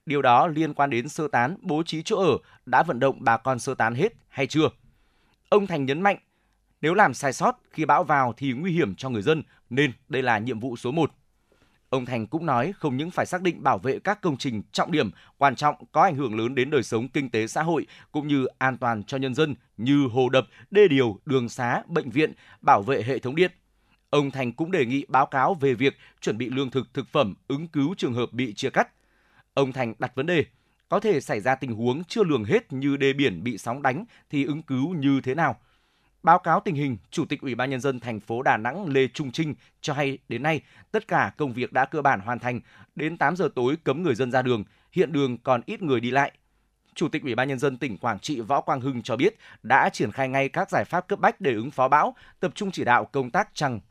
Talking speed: 250 wpm